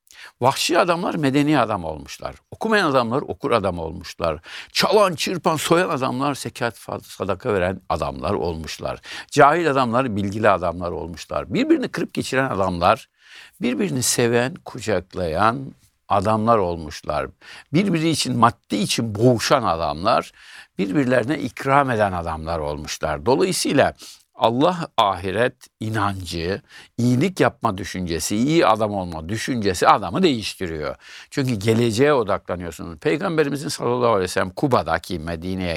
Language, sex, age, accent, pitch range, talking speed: Turkish, male, 60-79, native, 90-125 Hz, 110 wpm